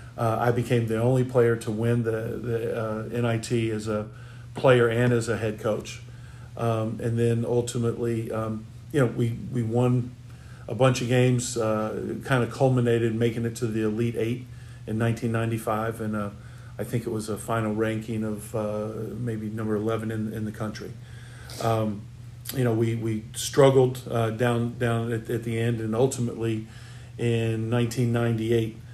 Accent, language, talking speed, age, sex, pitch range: American, English, 170 wpm, 40-59, male, 110-120 Hz